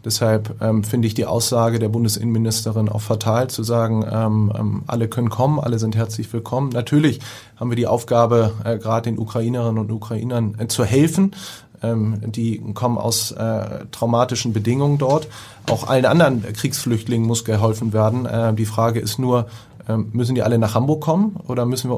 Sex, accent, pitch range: male, German, 110-125 Hz